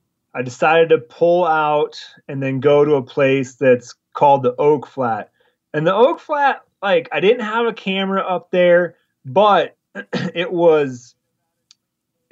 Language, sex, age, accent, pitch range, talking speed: English, male, 30-49, American, 130-175 Hz, 155 wpm